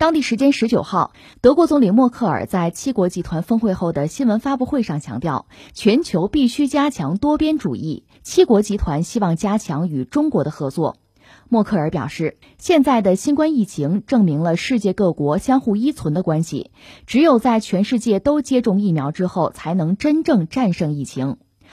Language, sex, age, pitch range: Chinese, female, 20-39, 165-255 Hz